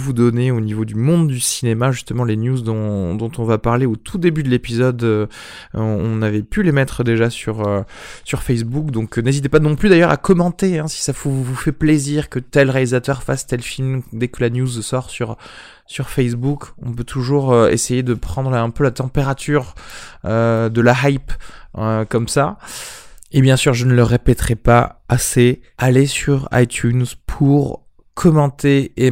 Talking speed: 195 wpm